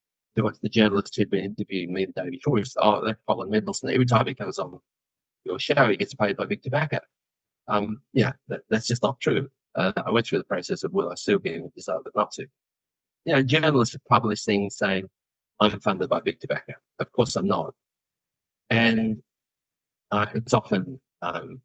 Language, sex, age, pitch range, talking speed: English, male, 30-49, 105-125 Hz, 210 wpm